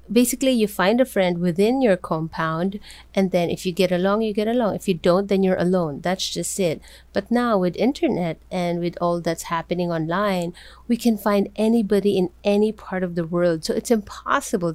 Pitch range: 170-205 Hz